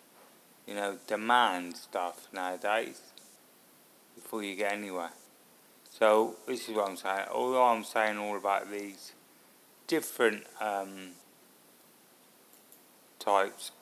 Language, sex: English, male